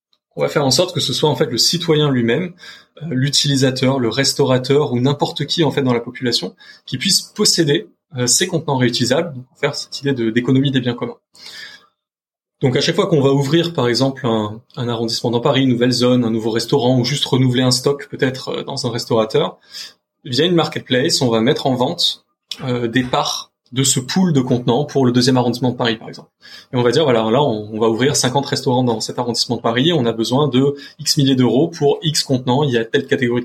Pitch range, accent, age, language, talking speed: 125-150 Hz, French, 20-39, French, 220 wpm